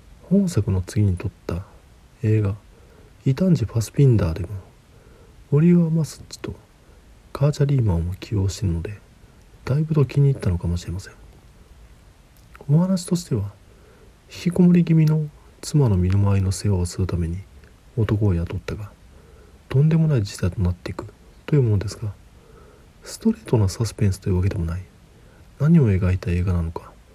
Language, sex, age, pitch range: Japanese, male, 40-59, 90-125 Hz